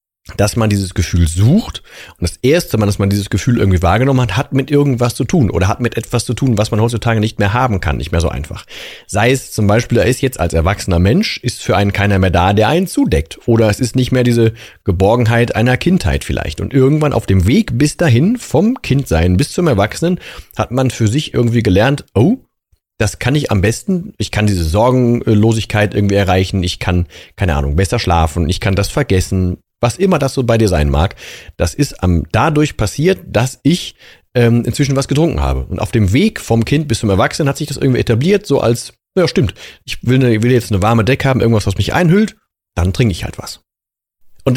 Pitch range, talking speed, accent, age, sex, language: 95-130 Hz, 220 wpm, German, 40-59, male, German